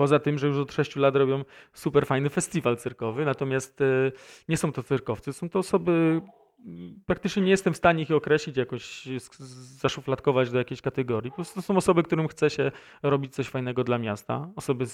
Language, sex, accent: Polish, male, native